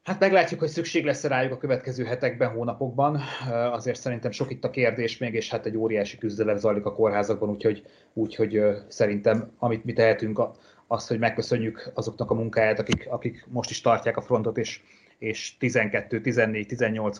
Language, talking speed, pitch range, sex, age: Hungarian, 170 wpm, 105-125 Hz, male, 30-49